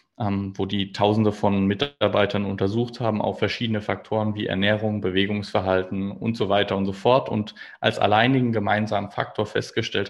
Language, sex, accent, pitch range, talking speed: German, male, German, 100-120 Hz, 150 wpm